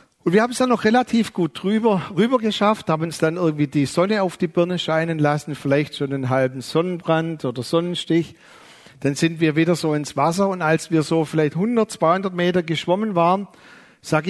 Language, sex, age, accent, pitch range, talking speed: German, male, 50-69, German, 165-220 Hz, 195 wpm